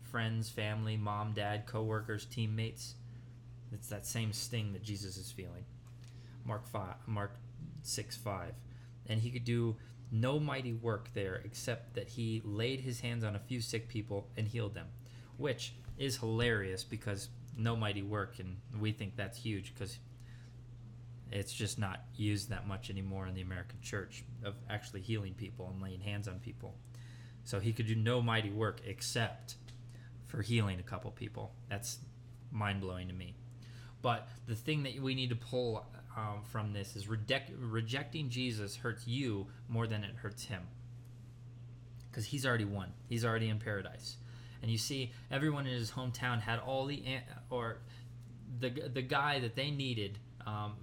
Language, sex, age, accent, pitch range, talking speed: English, male, 20-39, American, 110-120 Hz, 165 wpm